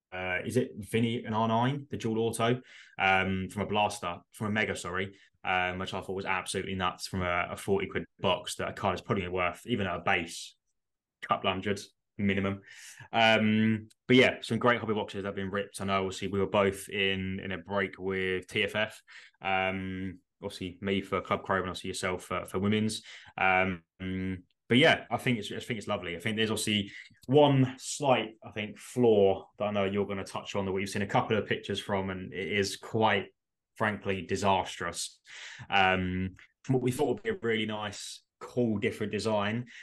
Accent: British